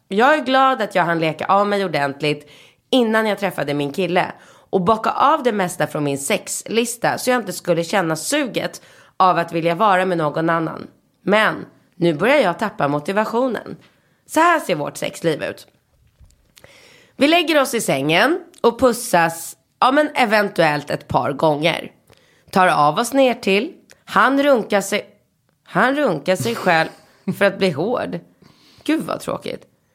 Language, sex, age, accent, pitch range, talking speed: Swedish, female, 30-49, native, 165-250 Hz, 160 wpm